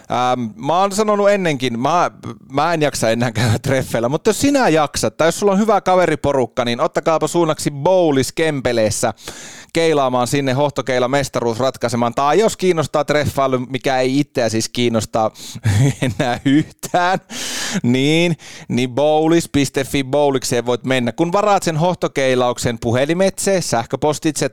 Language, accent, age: Finnish, native, 30-49